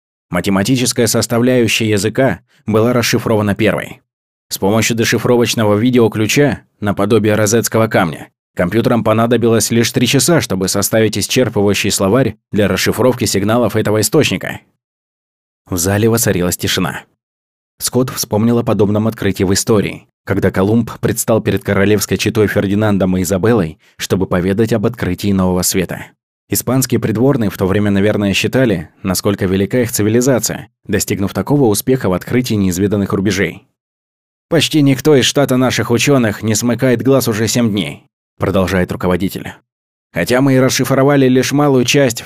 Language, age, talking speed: Russian, 20-39, 130 wpm